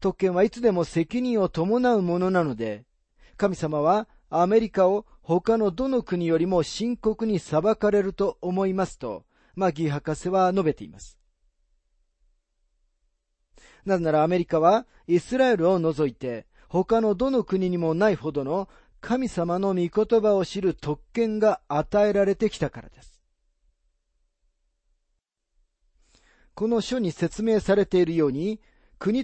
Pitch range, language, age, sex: 150-205 Hz, Japanese, 40-59, male